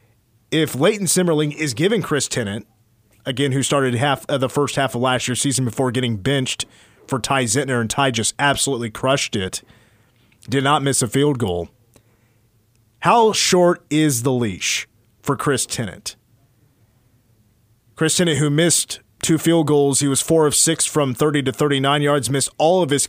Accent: American